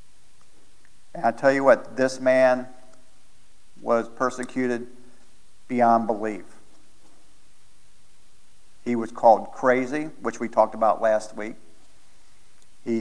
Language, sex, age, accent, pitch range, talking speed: English, male, 50-69, American, 115-140 Hz, 95 wpm